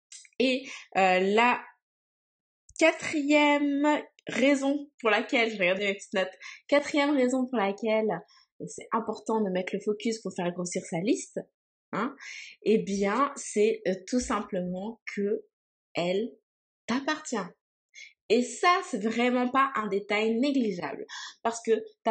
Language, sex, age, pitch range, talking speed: French, female, 20-39, 215-290 Hz, 135 wpm